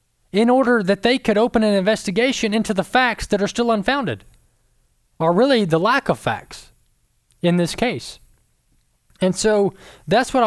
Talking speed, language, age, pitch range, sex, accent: 160 wpm, English, 20-39, 155-215 Hz, male, American